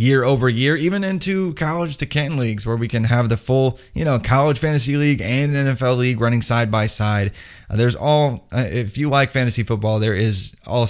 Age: 20-39